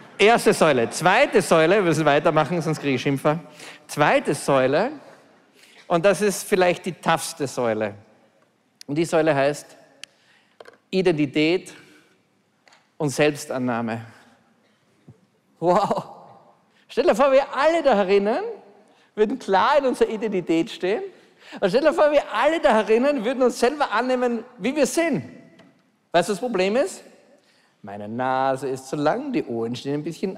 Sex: male